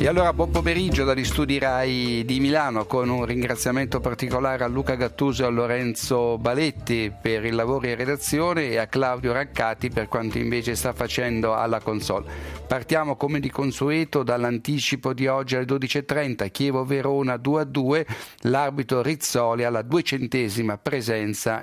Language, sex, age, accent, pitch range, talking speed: Italian, male, 50-69, native, 115-145 Hz, 155 wpm